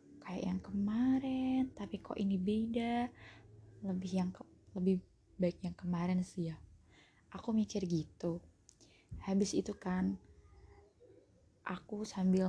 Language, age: Indonesian, 20-39